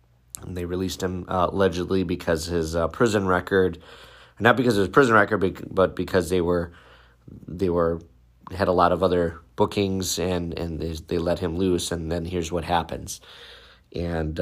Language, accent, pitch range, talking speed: English, American, 85-95 Hz, 175 wpm